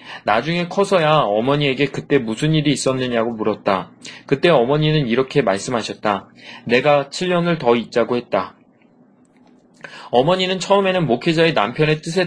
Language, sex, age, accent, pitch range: Korean, male, 20-39, native, 130-180 Hz